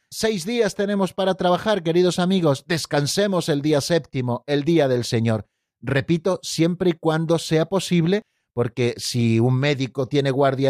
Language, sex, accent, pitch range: Spanish, male, Spanish, 130-160 Hz